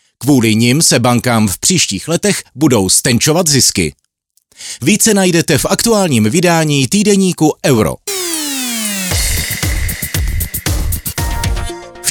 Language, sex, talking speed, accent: Czech, male, 90 wpm, native